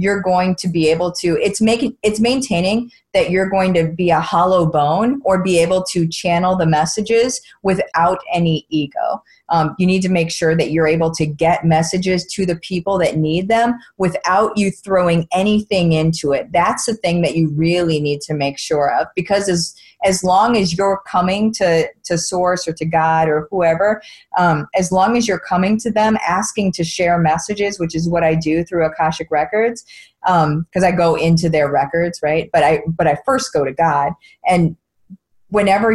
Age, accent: 30-49, American